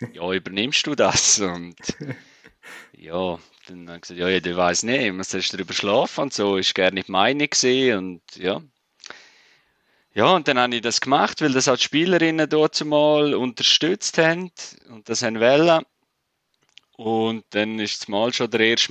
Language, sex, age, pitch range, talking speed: German, male, 30-49, 100-135 Hz, 180 wpm